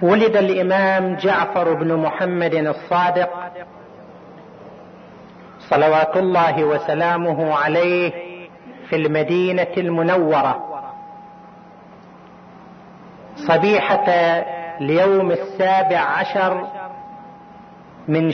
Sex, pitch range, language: male, 170-205 Hz, Arabic